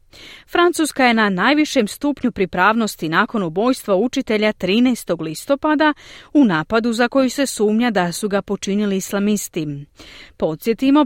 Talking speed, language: 125 wpm, Croatian